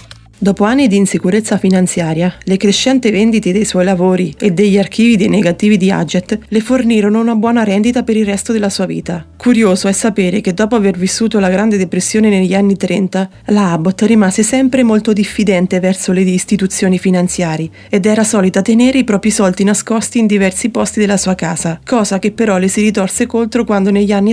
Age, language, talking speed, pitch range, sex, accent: 30-49, Italian, 185 wpm, 180-215 Hz, female, native